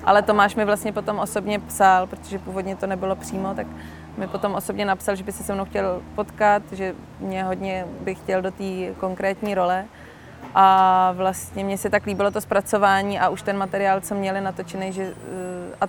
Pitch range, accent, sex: 180-200 Hz, native, female